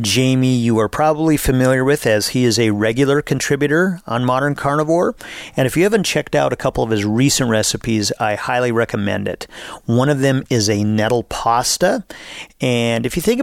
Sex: male